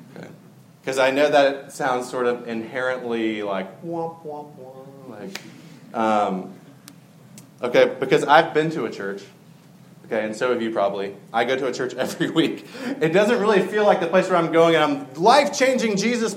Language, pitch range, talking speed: English, 130-175 Hz, 180 wpm